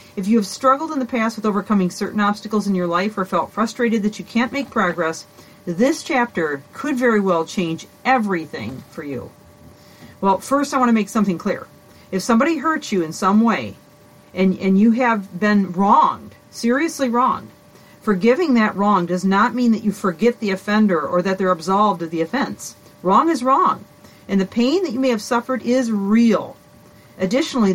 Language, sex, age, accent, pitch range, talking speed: English, female, 40-59, American, 180-235 Hz, 185 wpm